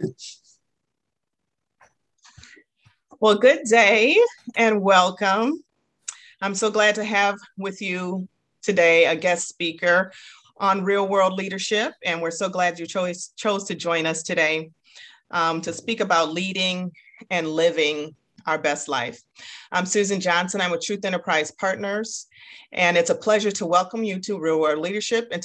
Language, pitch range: English, 165-205 Hz